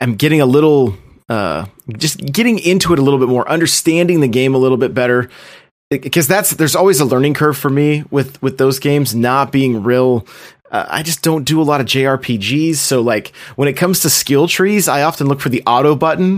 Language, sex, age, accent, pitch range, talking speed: English, male, 30-49, American, 130-160 Hz, 220 wpm